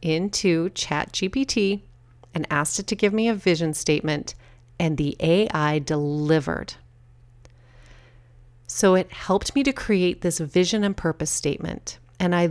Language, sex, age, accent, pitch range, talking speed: English, female, 30-49, American, 145-185 Hz, 135 wpm